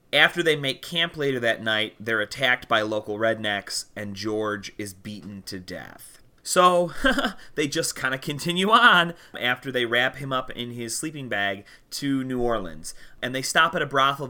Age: 30-49